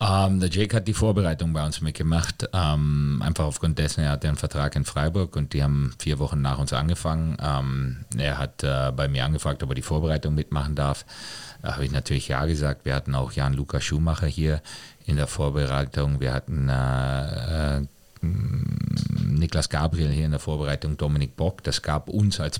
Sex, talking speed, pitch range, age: male, 175 wpm, 70-85 Hz, 40-59